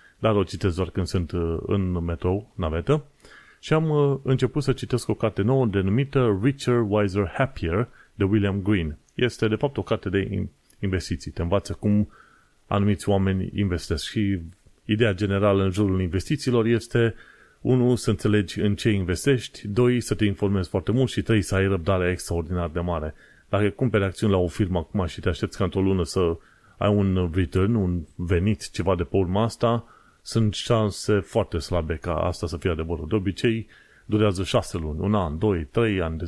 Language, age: Romanian, 30-49